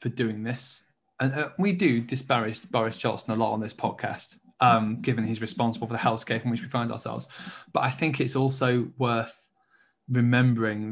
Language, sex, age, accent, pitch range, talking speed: English, male, 20-39, British, 115-125 Hz, 175 wpm